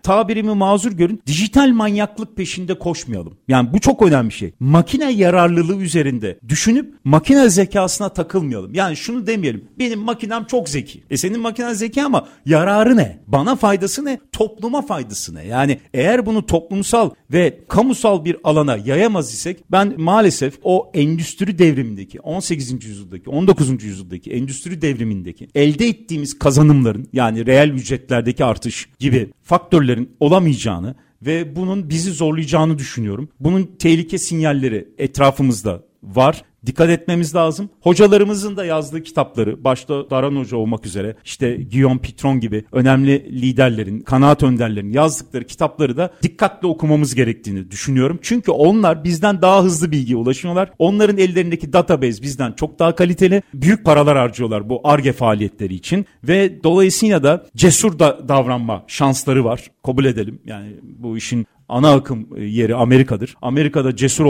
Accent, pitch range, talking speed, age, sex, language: native, 125-185 Hz, 140 wpm, 50-69, male, Turkish